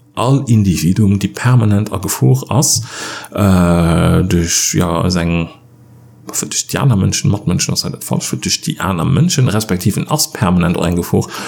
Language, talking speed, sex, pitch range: English, 85 wpm, male, 95-130 Hz